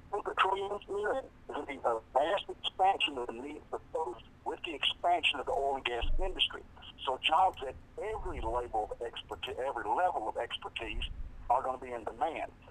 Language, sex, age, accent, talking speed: English, male, 50-69, American, 160 wpm